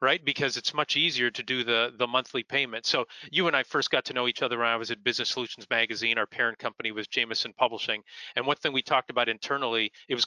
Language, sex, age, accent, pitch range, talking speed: English, male, 30-49, American, 115-140 Hz, 250 wpm